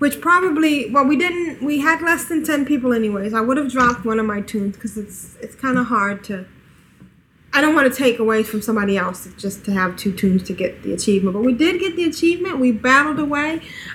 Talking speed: 230 wpm